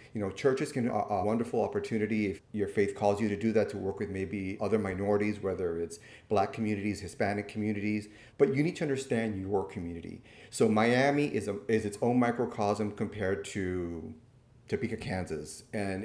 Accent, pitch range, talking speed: American, 100-115 Hz, 175 wpm